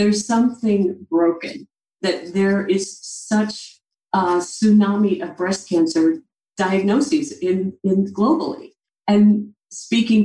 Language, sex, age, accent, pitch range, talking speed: English, female, 40-59, American, 185-250 Hz, 105 wpm